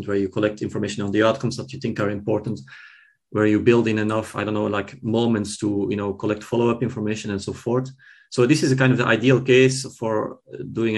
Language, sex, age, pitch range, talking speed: English, male, 30-49, 105-120 Hz, 230 wpm